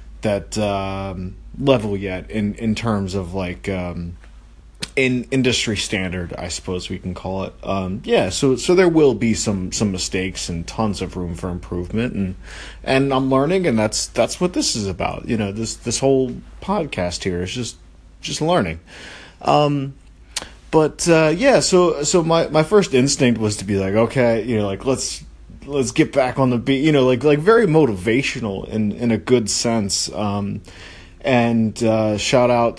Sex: male